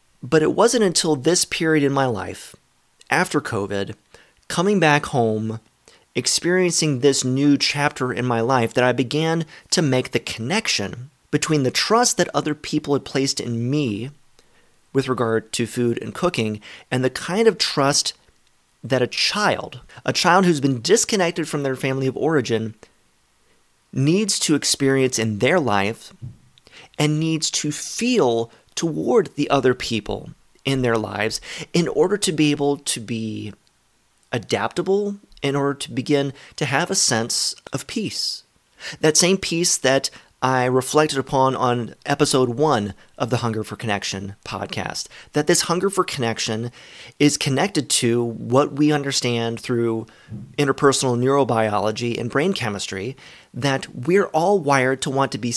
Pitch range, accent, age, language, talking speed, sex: 120-155 Hz, American, 30-49, English, 150 wpm, male